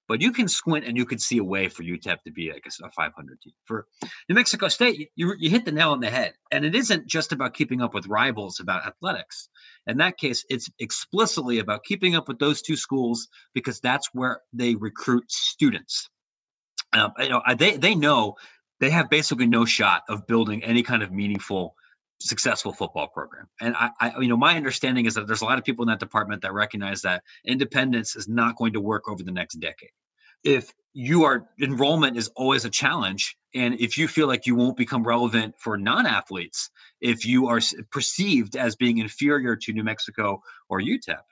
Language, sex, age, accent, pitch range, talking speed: English, male, 30-49, American, 110-140 Hz, 205 wpm